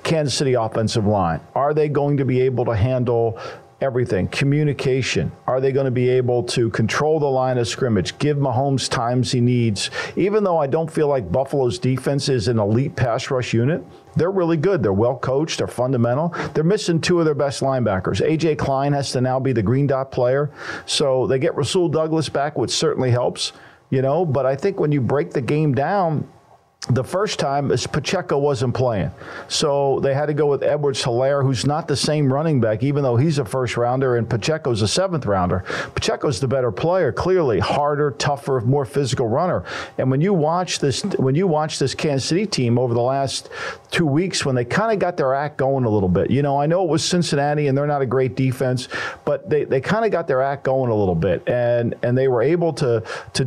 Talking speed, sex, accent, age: 215 wpm, male, American, 50-69